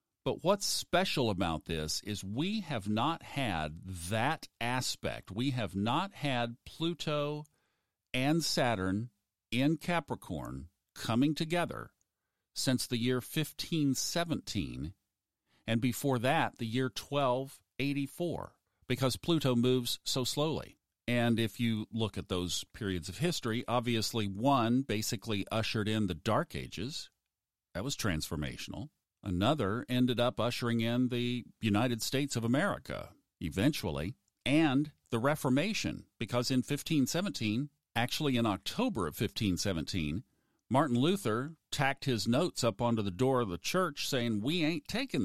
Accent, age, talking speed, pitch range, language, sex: American, 50-69, 125 wpm, 105-140 Hz, English, male